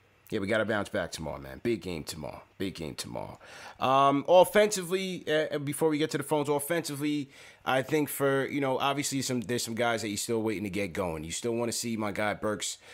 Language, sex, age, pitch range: English, male, 30-49, 110-140 Hz